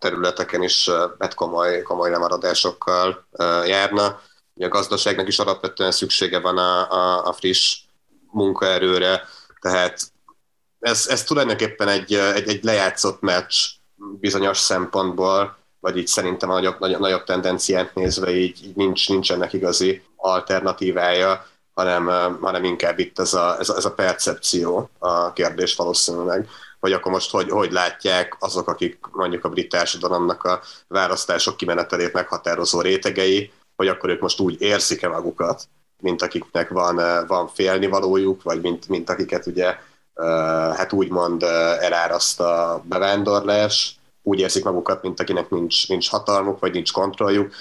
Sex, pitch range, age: male, 90-100 Hz, 30-49